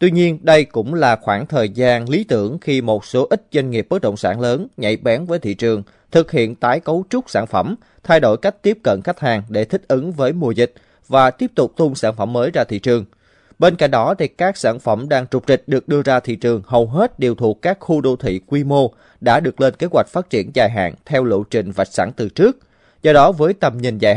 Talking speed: 255 wpm